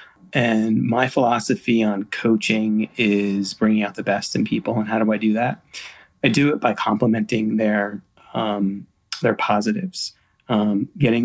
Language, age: English, 30-49